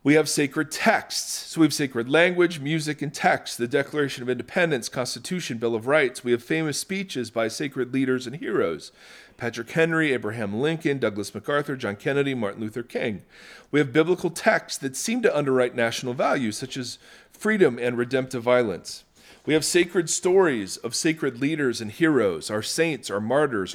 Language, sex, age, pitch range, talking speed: English, male, 40-59, 120-160 Hz, 175 wpm